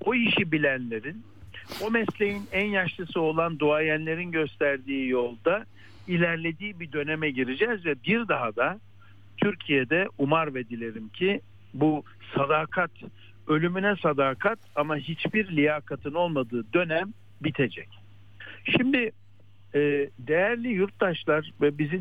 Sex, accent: male, native